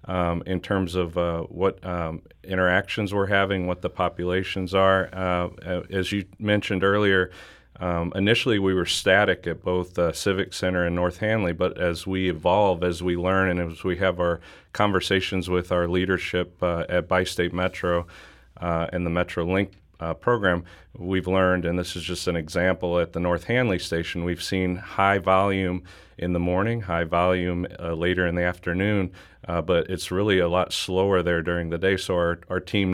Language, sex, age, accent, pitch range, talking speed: English, male, 40-59, American, 85-95 Hz, 185 wpm